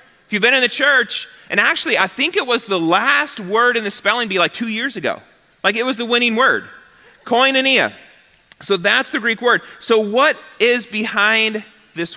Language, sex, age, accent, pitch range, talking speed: English, male, 30-49, American, 175-225 Hz, 195 wpm